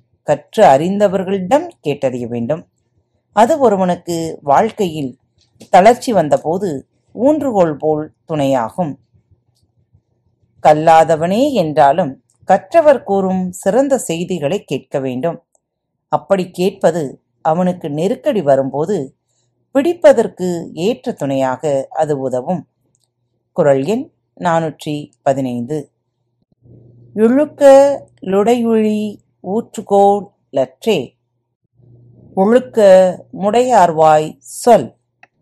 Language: Tamil